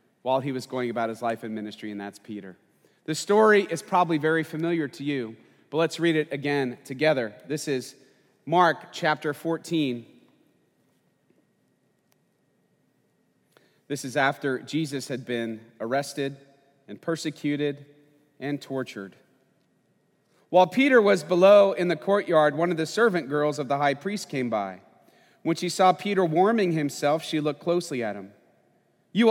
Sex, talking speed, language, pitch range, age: male, 145 wpm, English, 135-190 Hz, 40-59